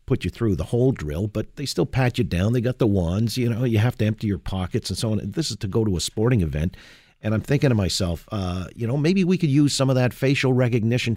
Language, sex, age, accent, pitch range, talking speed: English, male, 50-69, American, 100-130 Hz, 280 wpm